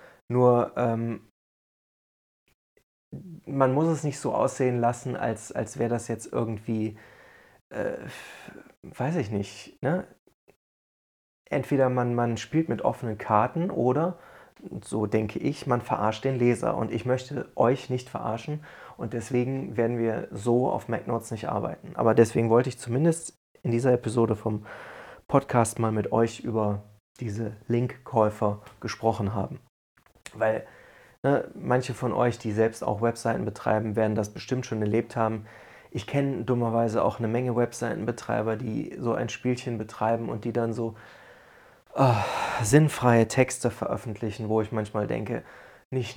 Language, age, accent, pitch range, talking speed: German, 30-49, German, 110-125 Hz, 140 wpm